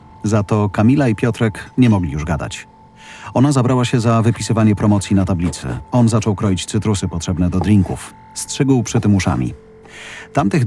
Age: 40-59